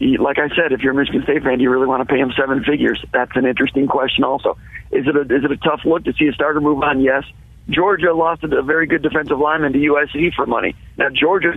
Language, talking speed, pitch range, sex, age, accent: English, 265 wpm, 140-160 Hz, male, 50-69, American